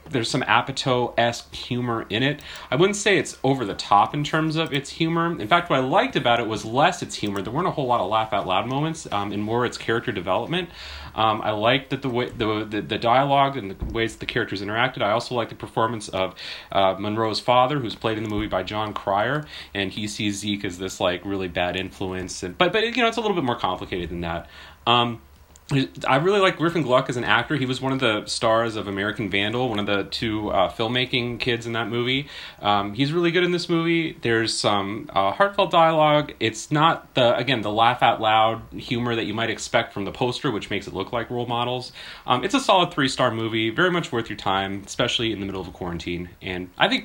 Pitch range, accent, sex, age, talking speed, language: 100-135 Hz, American, male, 30-49, 230 wpm, English